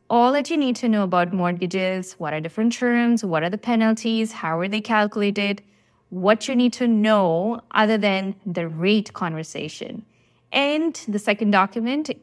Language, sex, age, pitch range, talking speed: English, female, 20-39, 180-235 Hz, 165 wpm